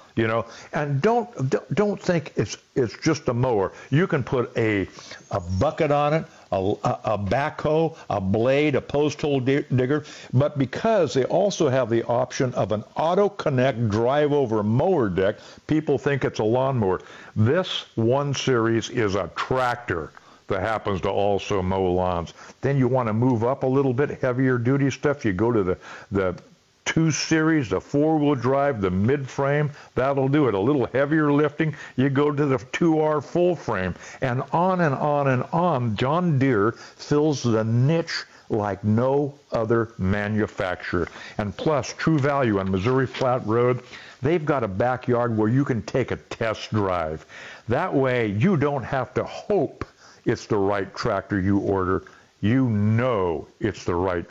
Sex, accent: male, American